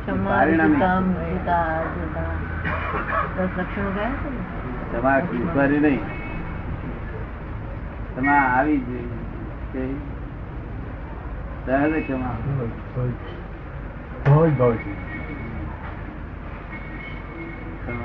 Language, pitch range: Gujarati, 85-135 Hz